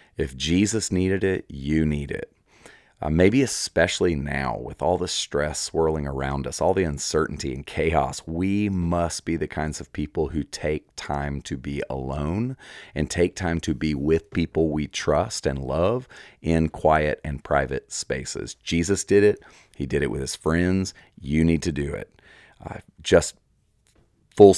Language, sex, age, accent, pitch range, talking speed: English, male, 40-59, American, 70-90 Hz, 170 wpm